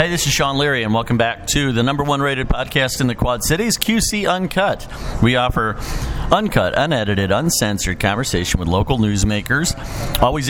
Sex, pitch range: male, 105-130 Hz